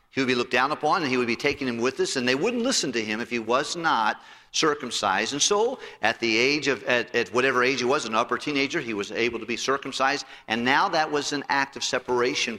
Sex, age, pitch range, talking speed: male, 50-69, 110-140 Hz, 260 wpm